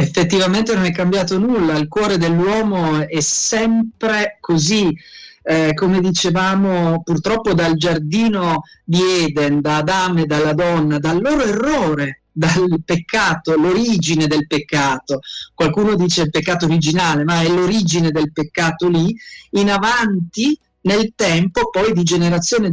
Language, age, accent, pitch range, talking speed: Italian, 40-59, native, 165-220 Hz, 130 wpm